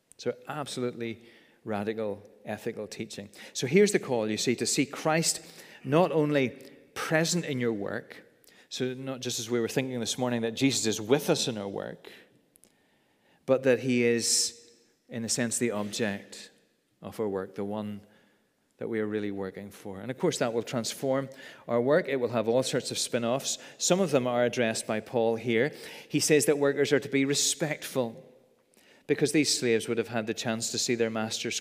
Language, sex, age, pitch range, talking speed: English, male, 40-59, 110-140 Hz, 190 wpm